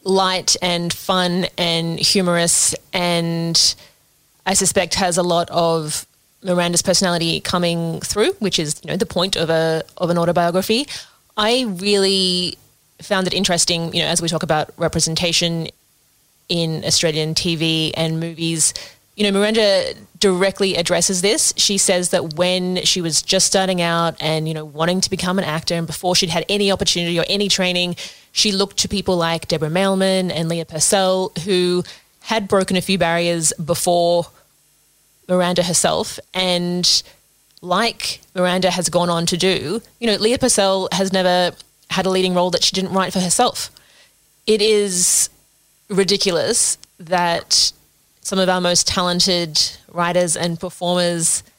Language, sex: English, female